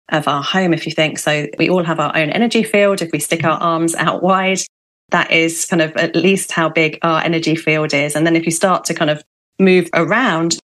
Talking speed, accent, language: 240 wpm, British, English